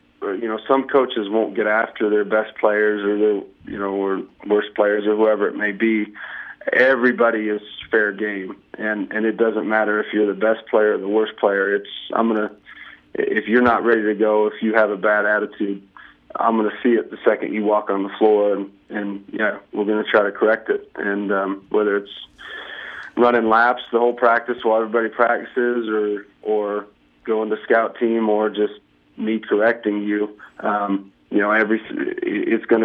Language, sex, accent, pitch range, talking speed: English, male, American, 100-110 Hz, 195 wpm